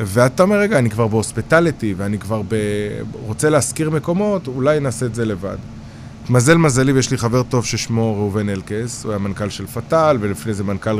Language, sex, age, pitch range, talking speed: Hebrew, male, 20-39, 110-140 Hz, 185 wpm